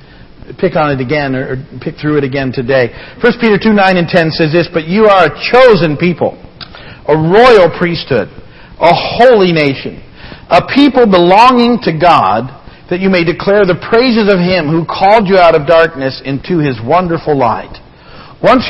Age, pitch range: 50-69, 135-180 Hz